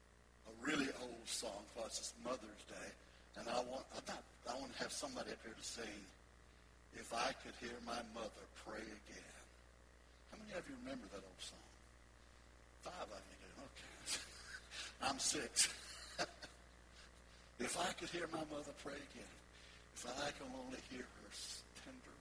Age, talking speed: 60-79, 150 wpm